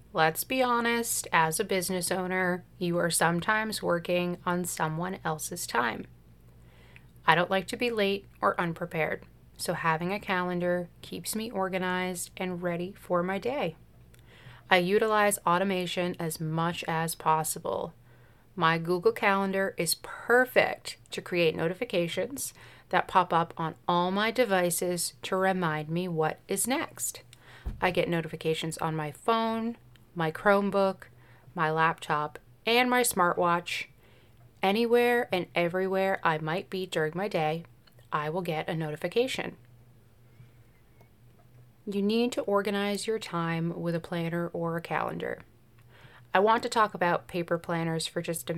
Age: 30-49